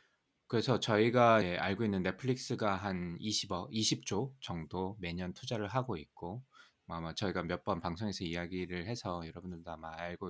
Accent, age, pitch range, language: native, 20-39, 90-120 Hz, Korean